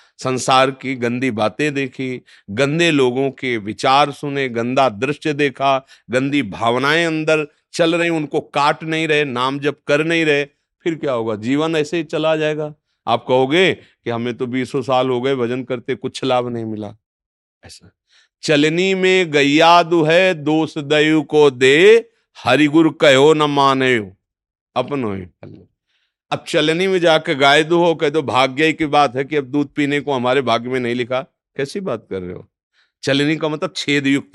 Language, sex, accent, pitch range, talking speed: Hindi, male, native, 130-165 Hz, 165 wpm